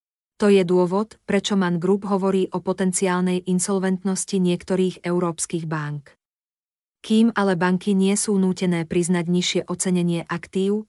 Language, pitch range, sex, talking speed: Slovak, 175-195 Hz, female, 125 wpm